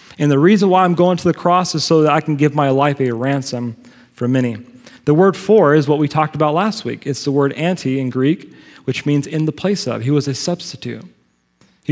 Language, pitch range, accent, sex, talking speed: English, 135-170 Hz, American, male, 240 wpm